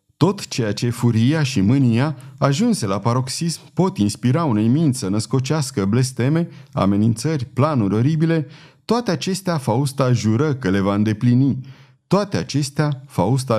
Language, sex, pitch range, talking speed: Romanian, male, 115-150 Hz, 135 wpm